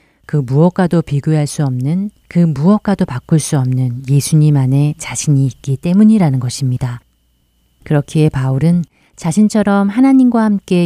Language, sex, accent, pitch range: Korean, female, native, 135-175 Hz